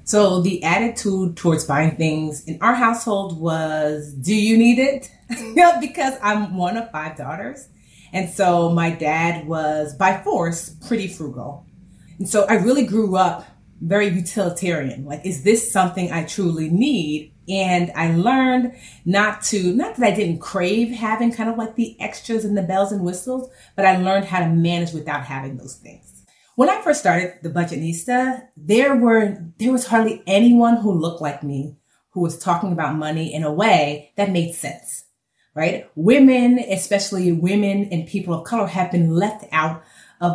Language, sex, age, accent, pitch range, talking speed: English, female, 30-49, American, 160-210 Hz, 170 wpm